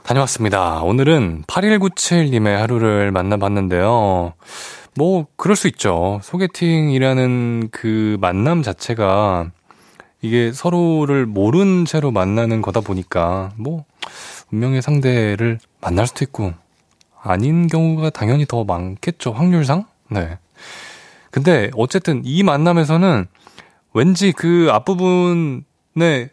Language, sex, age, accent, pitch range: Korean, male, 20-39, native, 95-155 Hz